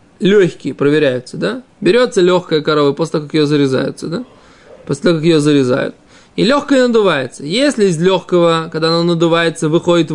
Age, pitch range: 20-39, 145-200 Hz